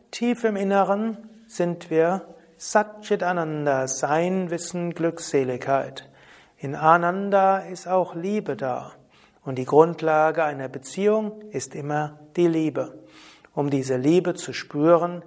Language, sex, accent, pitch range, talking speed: German, male, German, 150-190 Hz, 115 wpm